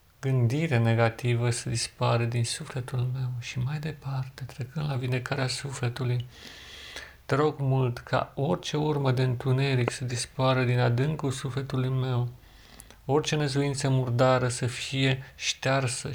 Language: Romanian